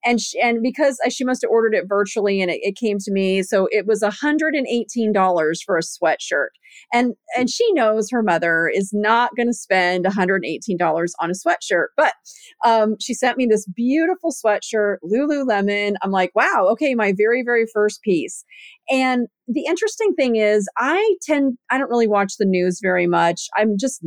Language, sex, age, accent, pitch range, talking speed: English, female, 30-49, American, 195-265 Hz, 180 wpm